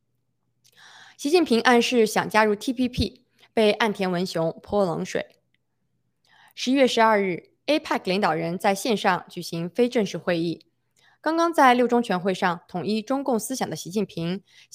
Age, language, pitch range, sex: 20-39, Chinese, 180-235 Hz, female